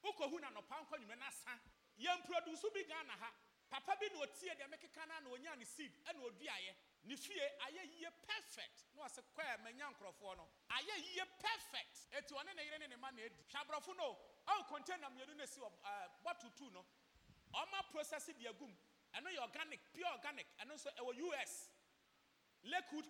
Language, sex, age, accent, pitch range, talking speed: English, male, 30-49, Nigerian, 245-325 Hz, 190 wpm